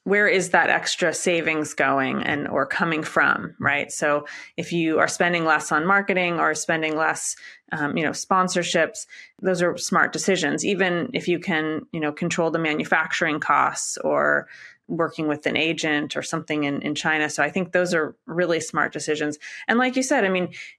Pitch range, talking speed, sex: 155-190 Hz, 185 wpm, female